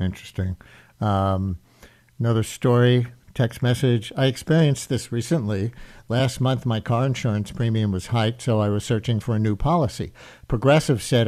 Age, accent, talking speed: 60-79, American, 150 wpm